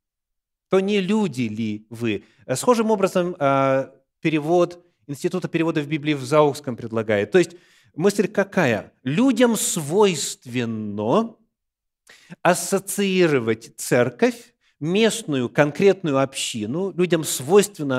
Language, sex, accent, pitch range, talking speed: Russian, male, native, 130-195 Hz, 95 wpm